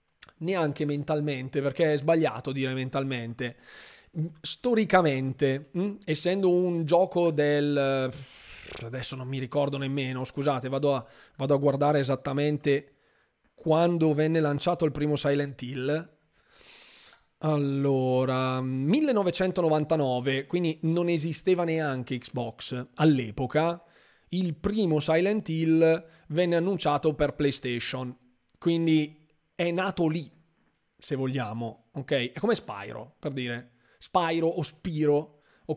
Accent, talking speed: native, 105 wpm